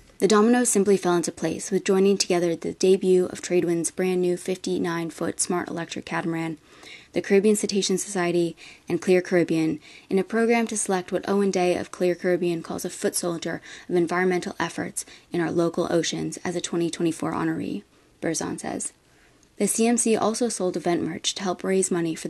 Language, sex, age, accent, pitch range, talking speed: English, female, 20-39, American, 175-215 Hz, 170 wpm